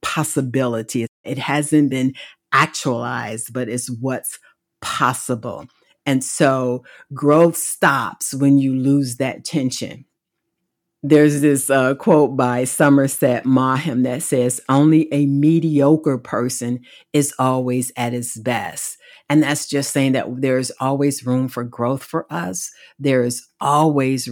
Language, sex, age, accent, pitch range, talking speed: English, female, 50-69, American, 130-150 Hz, 125 wpm